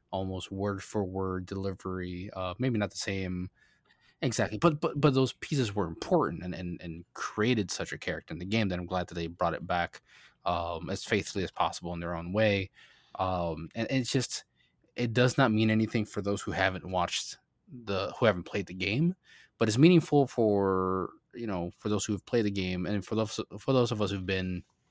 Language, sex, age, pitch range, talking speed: English, male, 20-39, 90-110 Hz, 210 wpm